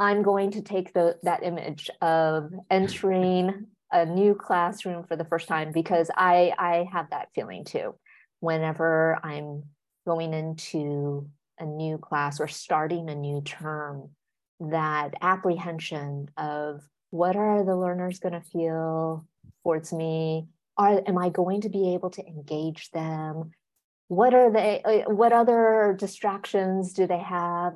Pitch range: 160-195 Hz